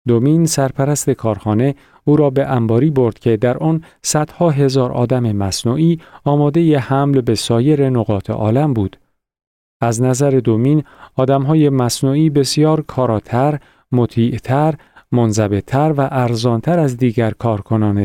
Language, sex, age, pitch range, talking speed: Persian, male, 40-59, 115-145 Hz, 125 wpm